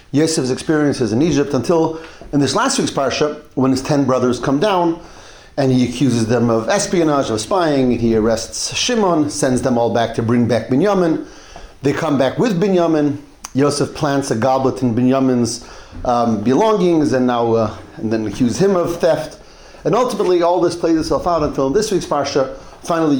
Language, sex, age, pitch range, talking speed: English, male, 40-59, 130-175 Hz, 185 wpm